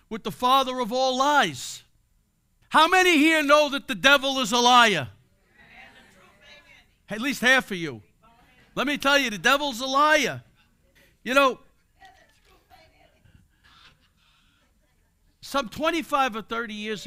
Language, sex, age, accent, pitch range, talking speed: English, male, 60-79, American, 155-210 Hz, 125 wpm